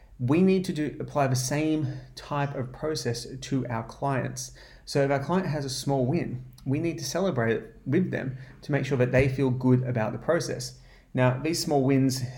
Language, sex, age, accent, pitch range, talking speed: English, male, 30-49, Australian, 120-140 Hz, 205 wpm